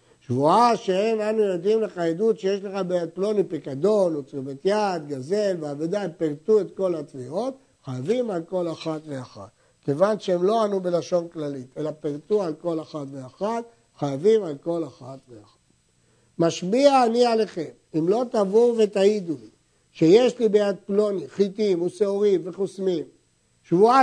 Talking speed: 145 wpm